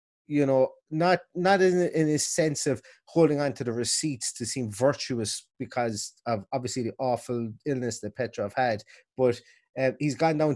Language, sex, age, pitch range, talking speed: English, male, 30-49, 115-155 Hz, 175 wpm